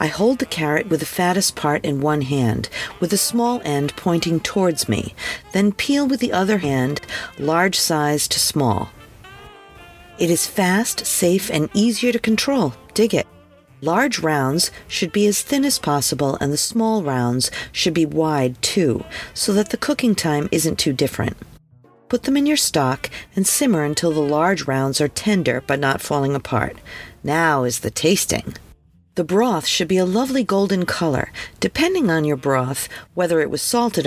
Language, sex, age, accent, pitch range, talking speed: English, female, 50-69, American, 145-215 Hz, 175 wpm